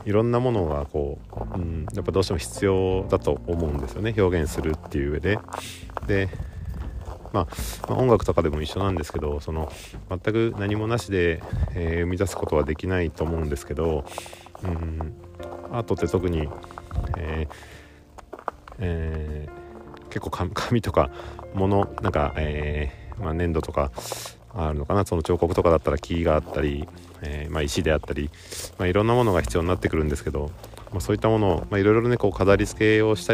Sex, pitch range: male, 80-100 Hz